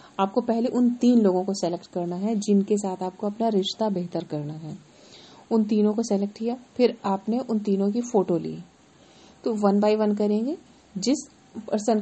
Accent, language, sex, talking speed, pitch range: native, Hindi, female, 180 wpm, 195-235 Hz